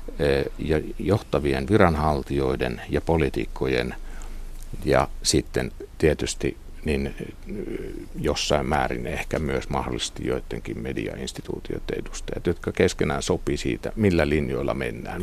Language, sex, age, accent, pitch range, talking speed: Finnish, male, 60-79, native, 75-100 Hz, 95 wpm